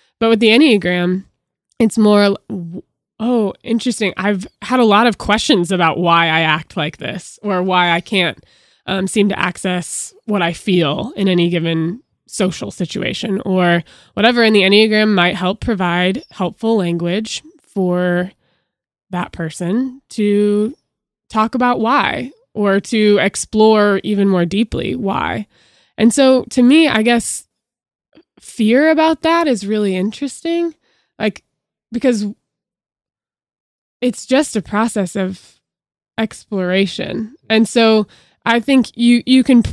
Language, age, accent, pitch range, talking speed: English, 20-39, American, 190-240 Hz, 130 wpm